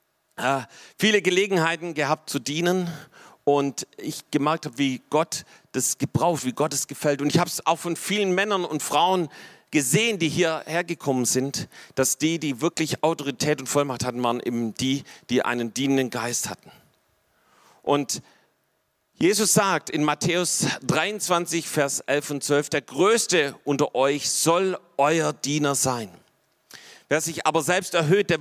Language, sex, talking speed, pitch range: German, male, 150 wpm, 145-175 Hz